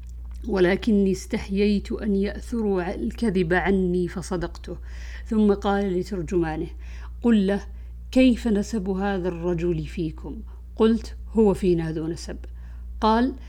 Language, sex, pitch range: Arabic, female, 165-225 Hz